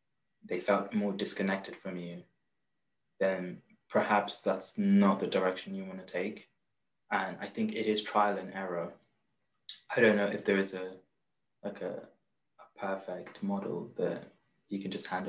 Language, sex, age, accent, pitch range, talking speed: English, male, 20-39, British, 95-105 Hz, 160 wpm